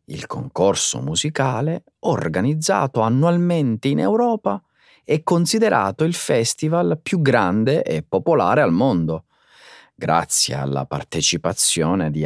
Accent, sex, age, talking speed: native, male, 30-49, 105 wpm